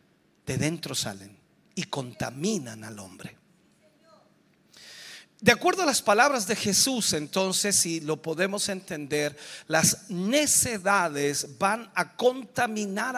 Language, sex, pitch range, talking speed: Spanish, male, 185-275 Hz, 110 wpm